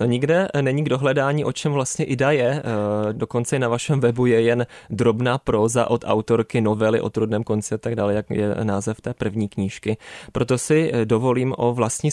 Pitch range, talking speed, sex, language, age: 110-125 Hz, 200 wpm, male, Czech, 20-39